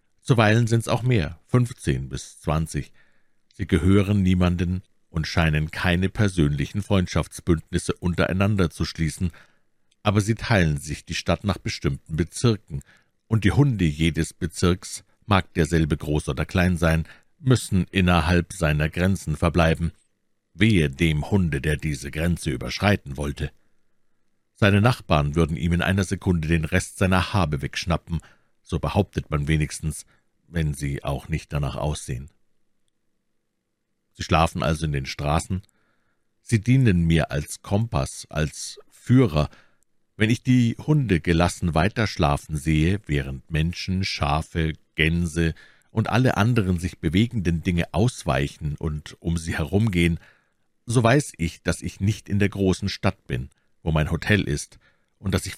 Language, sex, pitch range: German, male, 80-100 Hz